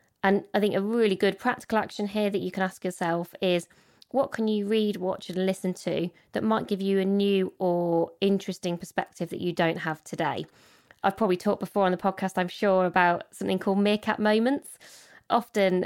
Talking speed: 195 wpm